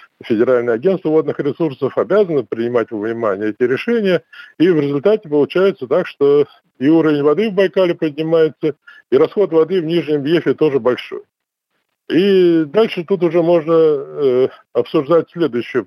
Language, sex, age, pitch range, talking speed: Russian, male, 50-69, 135-220 Hz, 145 wpm